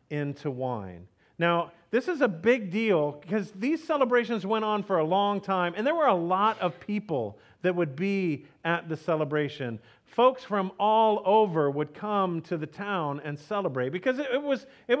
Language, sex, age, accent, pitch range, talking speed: English, male, 40-59, American, 155-225 Hz, 170 wpm